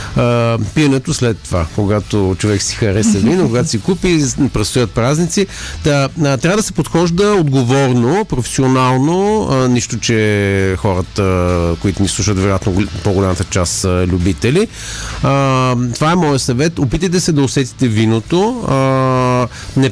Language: Bulgarian